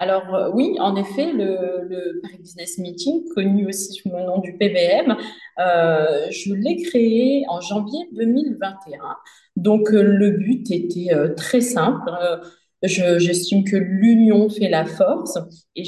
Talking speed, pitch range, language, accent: 140 wpm, 170-225 Hz, French, French